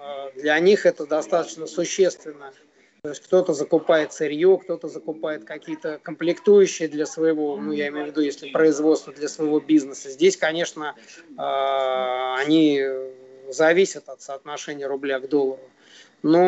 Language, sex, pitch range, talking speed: Russian, male, 140-170 Hz, 130 wpm